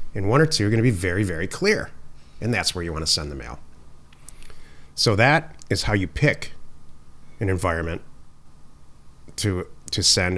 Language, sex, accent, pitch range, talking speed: English, male, American, 75-105 Hz, 170 wpm